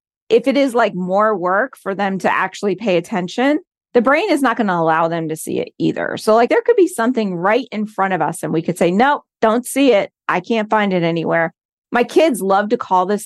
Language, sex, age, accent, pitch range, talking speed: English, female, 40-59, American, 180-240 Hz, 240 wpm